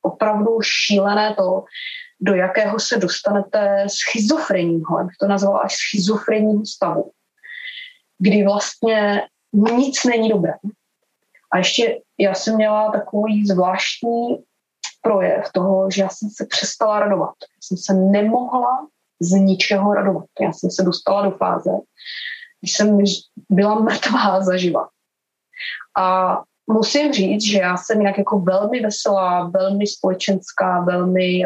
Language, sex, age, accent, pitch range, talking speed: Czech, female, 20-39, native, 190-220 Hz, 125 wpm